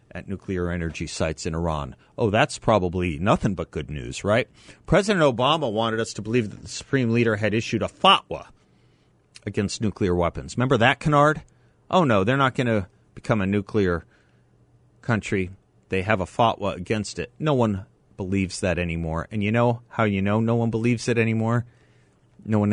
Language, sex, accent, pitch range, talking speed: English, male, American, 95-120 Hz, 180 wpm